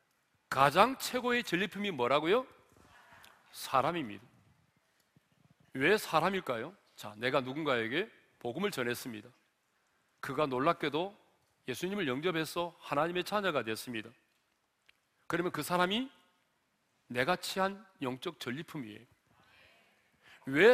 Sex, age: male, 40-59